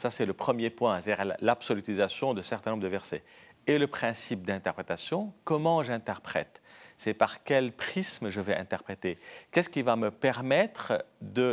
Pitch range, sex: 110-145 Hz, male